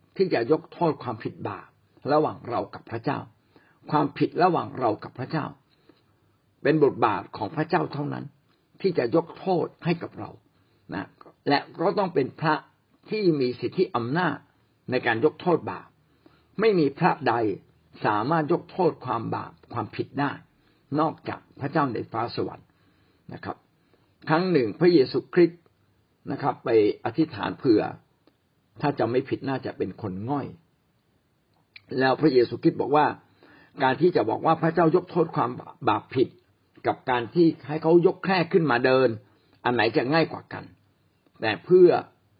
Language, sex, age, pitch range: Thai, male, 60-79, 125-170 Hz